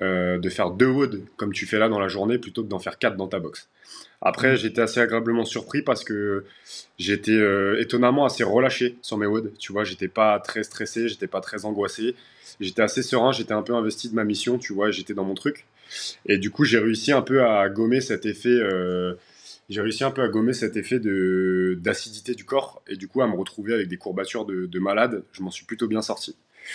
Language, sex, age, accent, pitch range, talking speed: French, male, 20-39, French, 95-115 Hz, 230 wpm